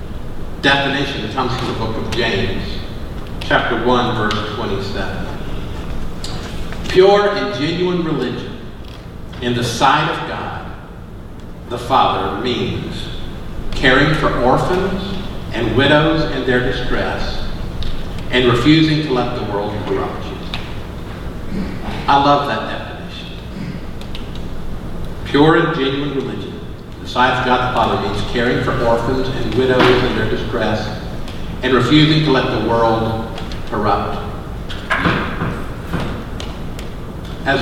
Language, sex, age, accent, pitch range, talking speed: English, male, 50-69, American, 110-140 Hz, 115 wpm